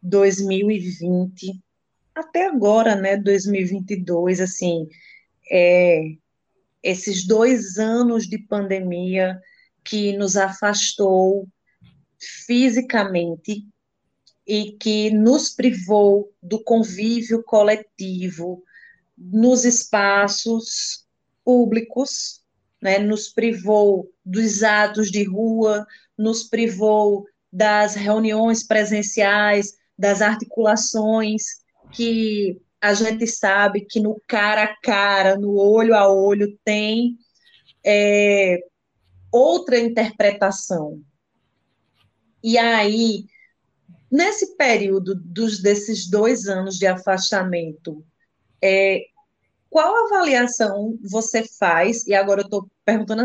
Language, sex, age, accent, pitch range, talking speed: Portuguese, female, 30-49, Brazilian, 195-225 Hz, 80 wpm